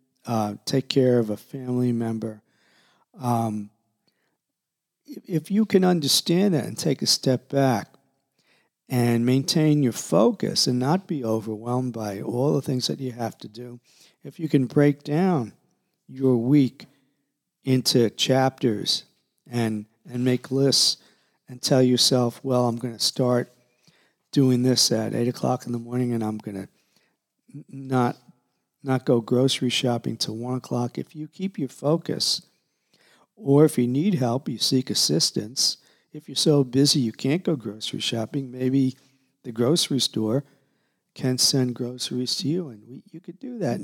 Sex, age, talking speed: male, 50-69, 155 wpm